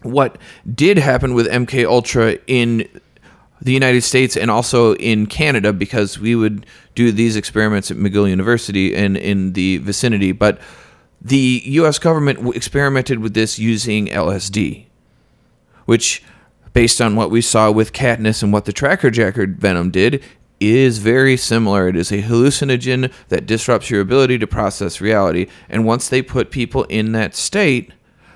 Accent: American